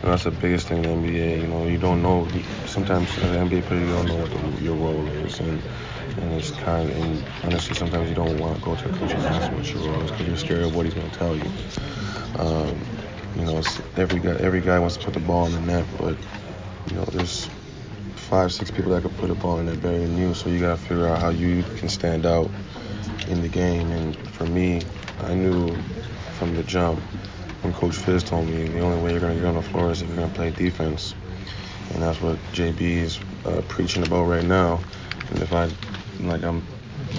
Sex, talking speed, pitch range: male, 240 wpm, 85-95 Hz